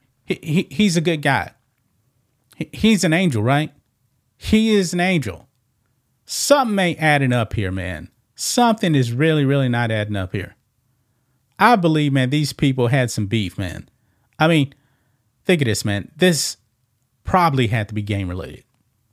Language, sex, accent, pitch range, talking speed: English, male, American, 120-150 Hz, 160 wpm